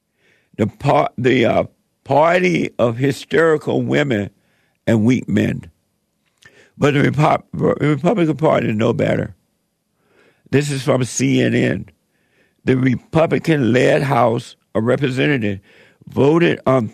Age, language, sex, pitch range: 60-79, English, male, 120-150 Hz